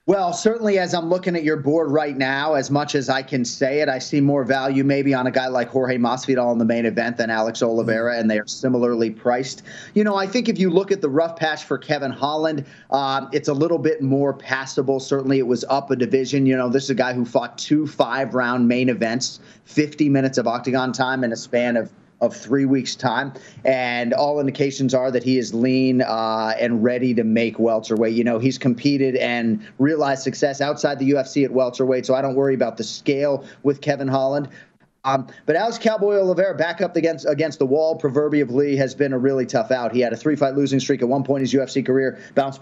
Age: 30-49